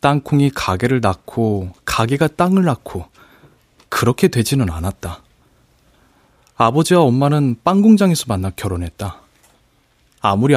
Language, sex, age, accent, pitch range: Korean, male, 20-39, native, 105-160 Hz